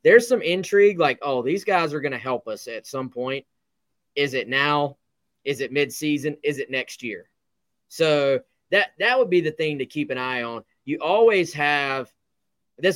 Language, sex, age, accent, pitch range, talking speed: English, male, 20-39, American, 125-150 Hz, 190 wpm